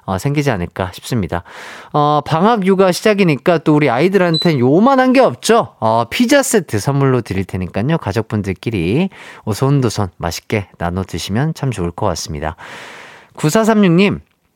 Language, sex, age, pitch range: Korean, male, 40-59, 105-175 Hz